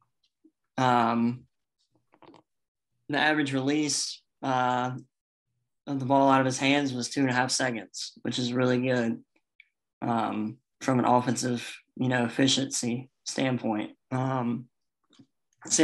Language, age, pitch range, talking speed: English, 20-39, 120-135 Hz, 115 wpm